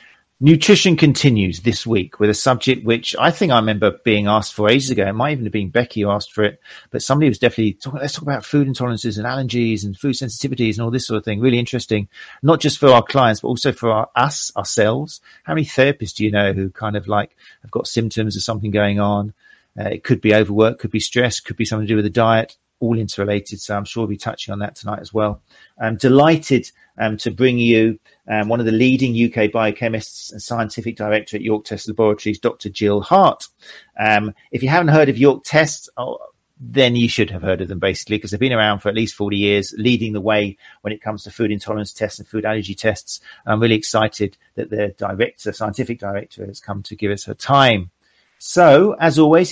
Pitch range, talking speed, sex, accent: 105-130 Hz, 225 wpm, male, British